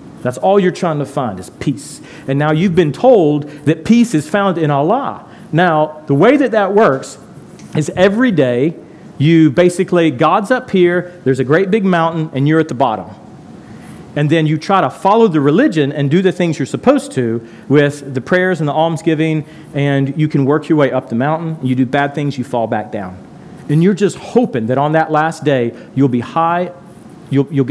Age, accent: 40-59, American